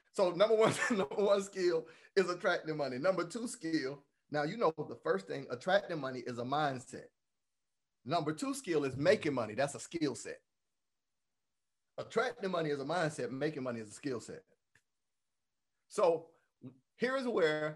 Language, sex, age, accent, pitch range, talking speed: English, male, 30-49, American, 130-180 Hz, 160 wpm